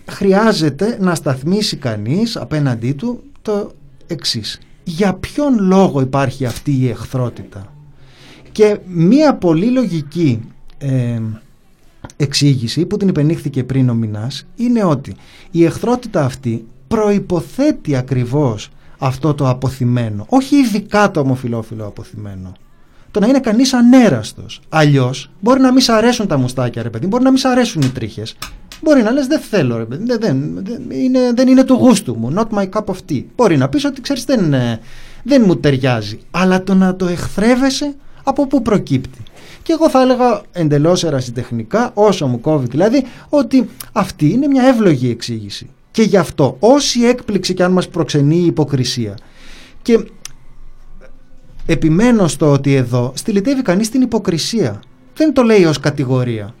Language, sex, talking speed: Greek, male, 150 wpm